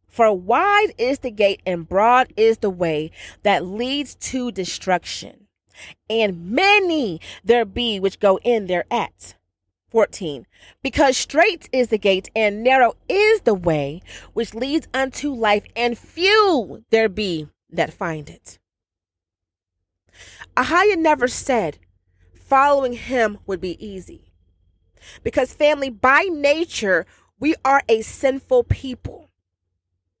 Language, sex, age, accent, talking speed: English, female, 30-49, American, 120 wpm